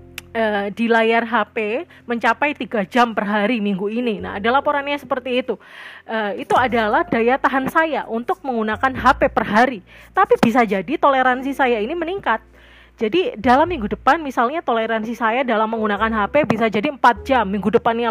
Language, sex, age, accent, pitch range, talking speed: Indonesian, female, 30-49, native, 215-255 Hz, 160 wpm